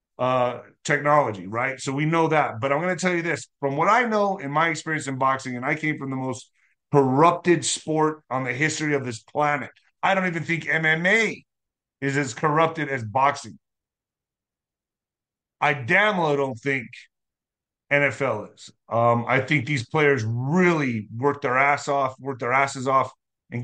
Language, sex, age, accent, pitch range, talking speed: English, male, 30-49, American, 135-165 Hz, 175 wpm